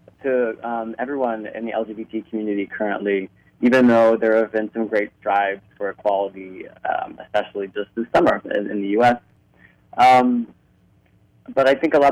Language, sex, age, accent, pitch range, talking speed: English, male, 20-39, American, 105-125 Hz, 165 wpm